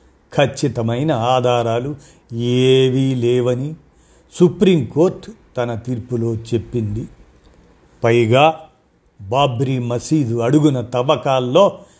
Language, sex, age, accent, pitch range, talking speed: Telugu, male, 50-69, native, 120-150 Hz, 65 wpm